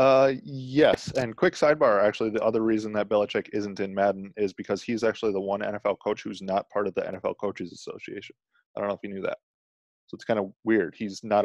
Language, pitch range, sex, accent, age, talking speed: English, 100-120 Hz, male, American, 20-39, 230 wpm